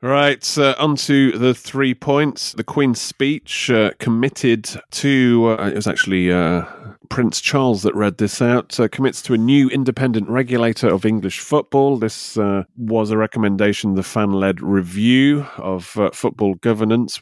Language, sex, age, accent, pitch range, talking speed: English, male, 30-49, British, 95-125 Hz, 155 wpm